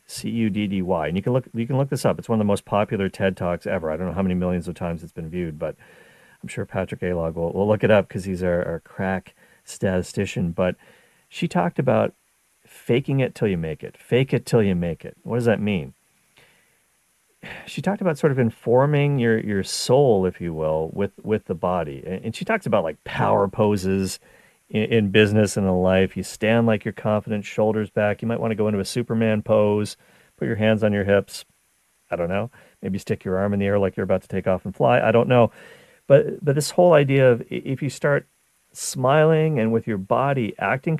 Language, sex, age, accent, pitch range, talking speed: English, male, 40-59, American, 95-125 Hz, 230 wpm